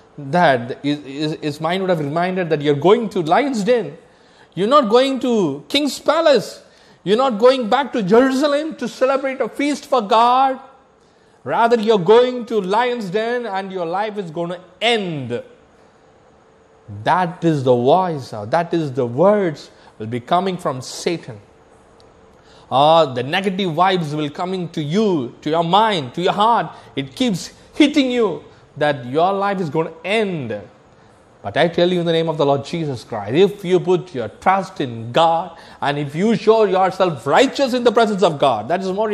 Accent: native